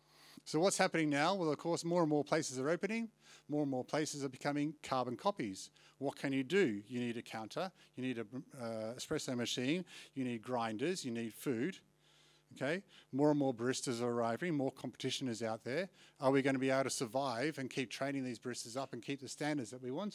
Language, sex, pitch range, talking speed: English, male, 120-155 Hz, 215 wpm